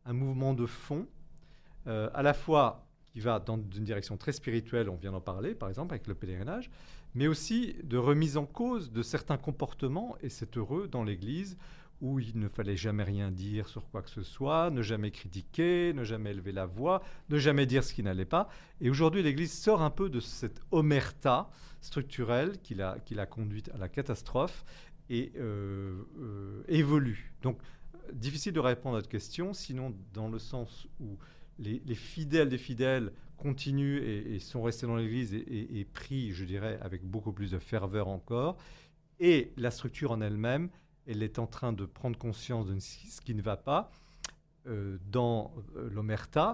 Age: 40-59